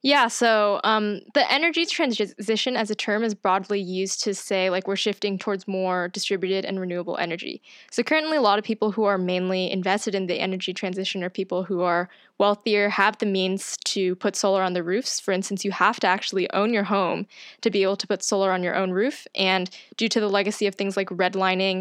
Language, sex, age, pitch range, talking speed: English, female, 10-29, 190-220 Hz, 215 wpm